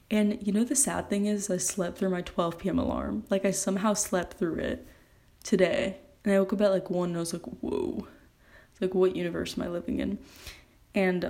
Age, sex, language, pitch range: 20-39, female, English, 170-205 Hz